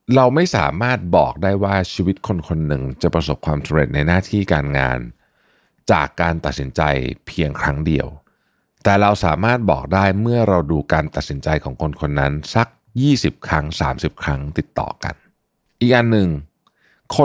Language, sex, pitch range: Thai, male, 75-110 Hz